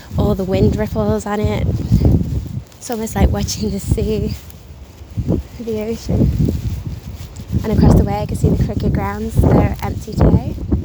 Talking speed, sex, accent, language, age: 155 wpm, female, British, English, 20-39